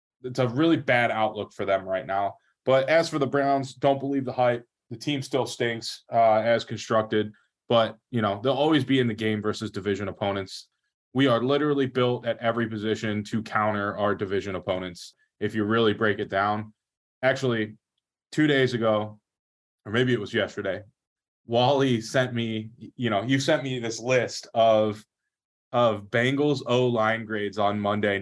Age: 20-39